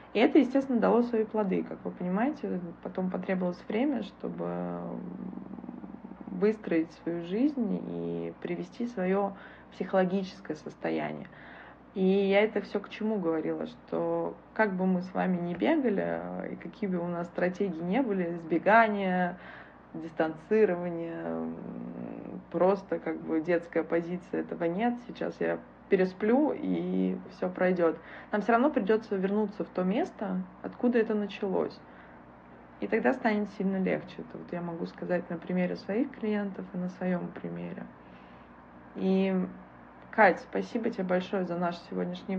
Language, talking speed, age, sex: Russian, 135 wpm, 20-39, female